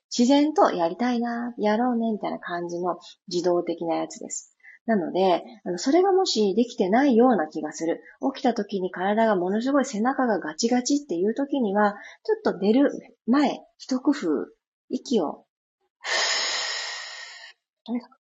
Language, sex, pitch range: Japanese, female, 175-275 Hz